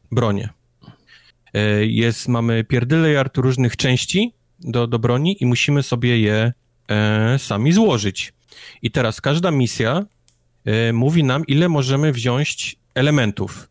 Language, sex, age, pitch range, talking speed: Polish, male, 30-49, 110-130 Hz, 120 wpm